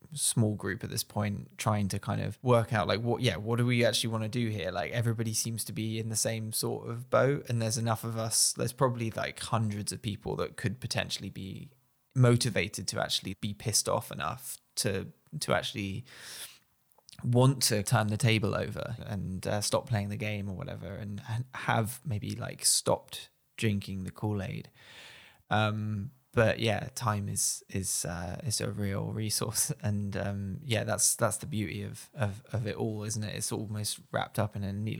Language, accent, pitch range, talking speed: English, British, 100-120 Hz, 190 wpm